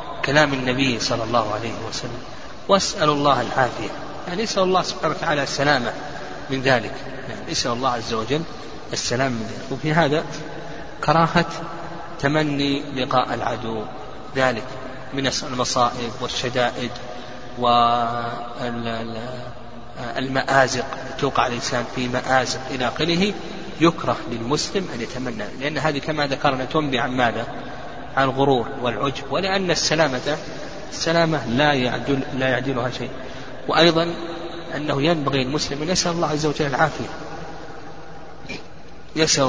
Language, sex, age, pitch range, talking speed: Arabic, male, 30-49, 125-155 Hz, 110 wpm